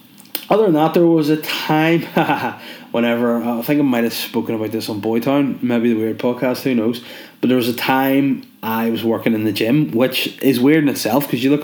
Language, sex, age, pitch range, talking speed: English, male, 20-39, 110-140 Hz, 220 wpm